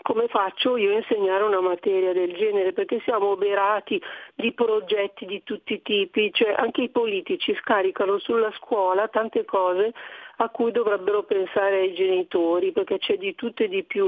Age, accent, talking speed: 40-59, native, 170 wpm